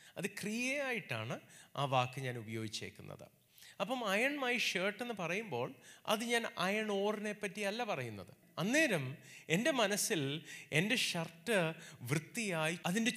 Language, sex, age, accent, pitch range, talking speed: Malayalam, male, 30-49, native, 135-205 Hz, 110 wpm